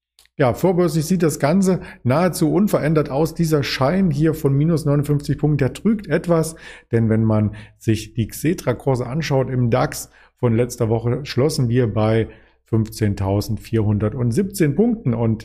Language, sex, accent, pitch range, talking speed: German, male, German, 110-145 Hz, 140 wpm